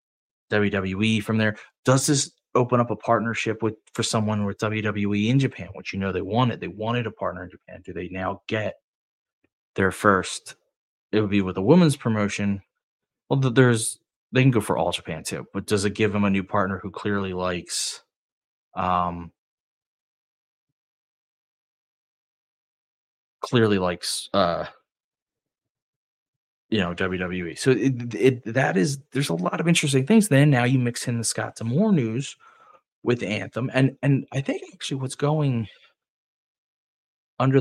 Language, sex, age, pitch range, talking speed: English, male, 20-39, 95-125 Hz, 155 wpm